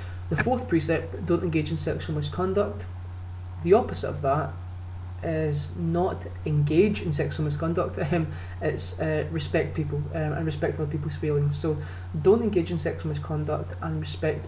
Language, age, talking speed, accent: English, 20-39, 150 wpm, British